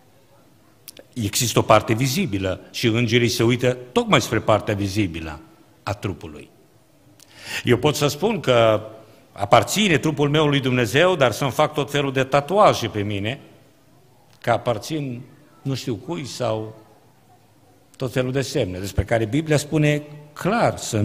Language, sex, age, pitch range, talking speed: Romanian, male, 50-69, 100-125 Hz, 140 wpm